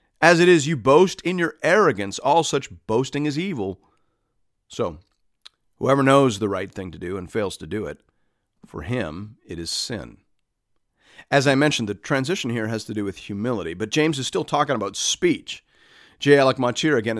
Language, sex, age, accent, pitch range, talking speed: English, male, 40-59, American, 115-165 Hz, 185 wpm